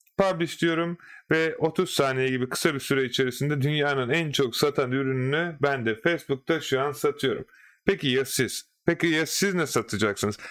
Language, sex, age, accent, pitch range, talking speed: Turkish, male, 30-49, native, 135-170 Hz, 165 wpm